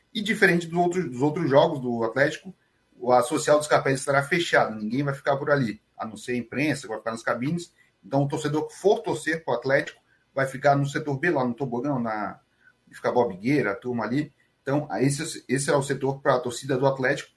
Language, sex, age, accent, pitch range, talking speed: Portuguese, male, 30-49, Brazilian, 125-155 Hz, 225 wpm